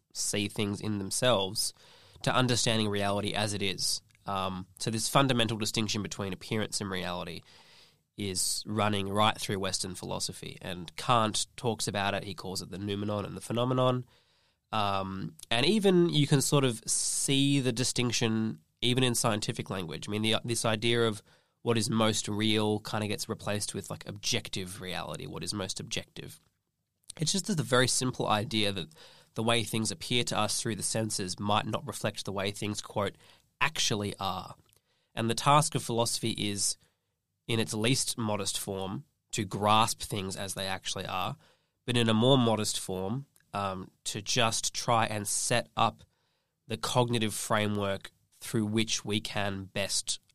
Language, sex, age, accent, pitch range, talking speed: English, male, 20-39, Australian, 100-120 Hz, 165 wpm